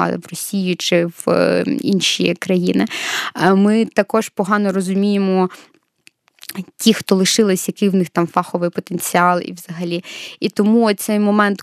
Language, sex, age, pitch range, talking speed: Ukrainian, female, 20-39, 180-215 Hz, 130 wpm